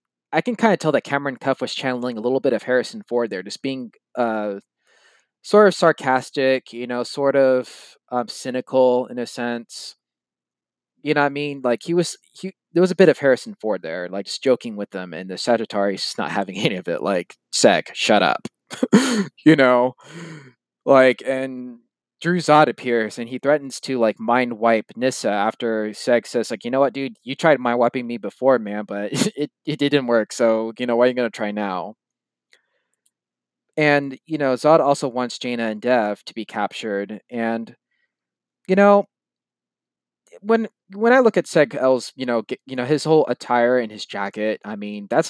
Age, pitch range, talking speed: 20-39, 110-140 Hz, 195 wpm